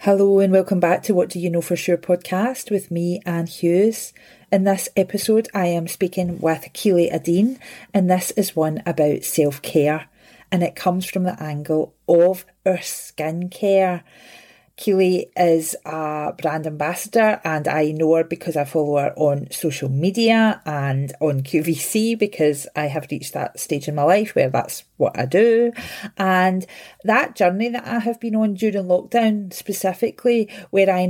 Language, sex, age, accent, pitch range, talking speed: English, female, 40-59, British, 160-210 Hz, 170 wpm